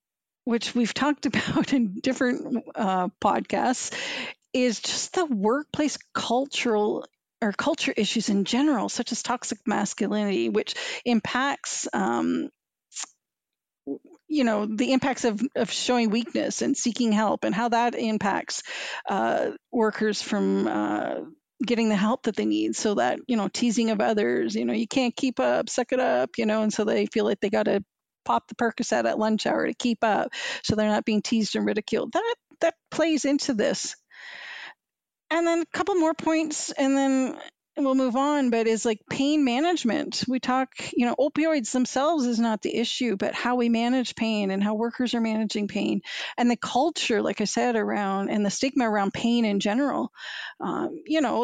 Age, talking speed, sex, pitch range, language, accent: 40-59, 175 wpm, female, 215-275 Hz, English, American